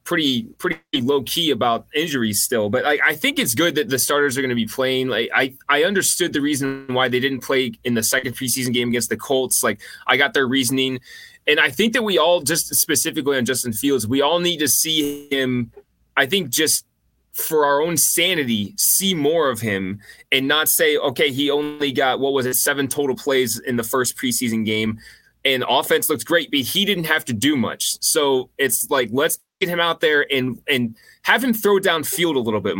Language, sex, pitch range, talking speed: English, male, 125-165 Hz, 210 wpm